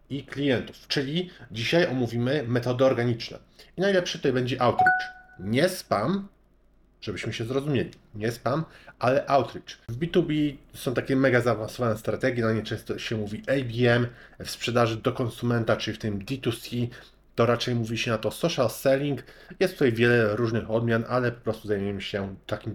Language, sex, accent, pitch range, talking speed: Polish, male, native, 110-140 Hz, 160 wpm